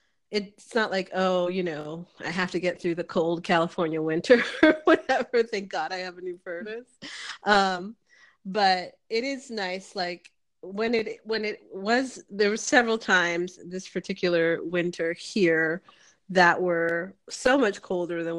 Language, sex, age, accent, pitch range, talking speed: English, female, 30-49, American, 170-215 Hz, 160 wpm